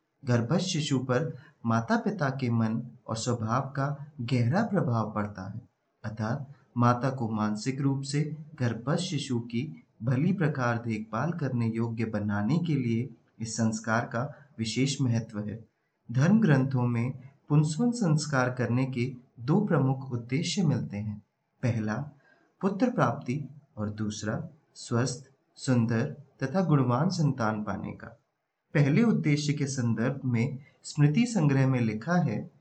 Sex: male